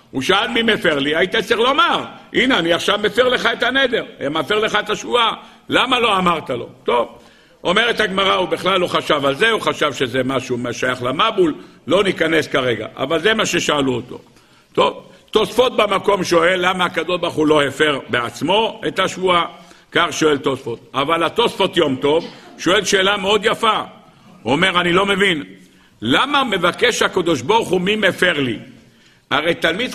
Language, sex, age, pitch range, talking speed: Hebrew, male, 60-79, 155-205 Hz, 170 wpm